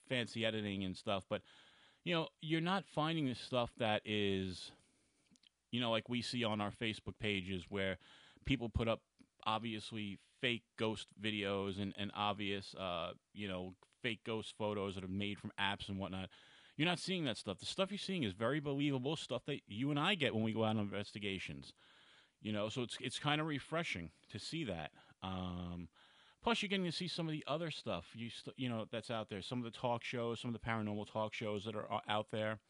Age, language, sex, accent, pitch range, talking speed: 30-49, English, male, American, 100-135 Hz, 210 wpm